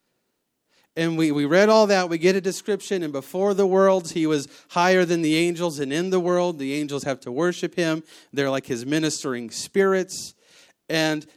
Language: English